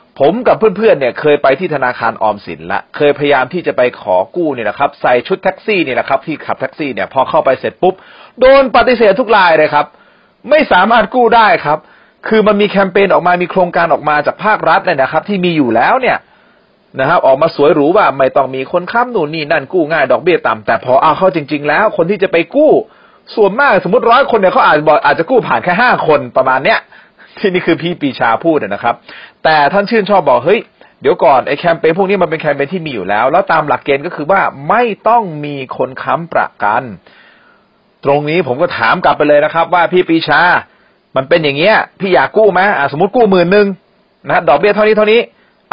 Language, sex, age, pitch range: Thai, male, 30-49, 145-205 Hz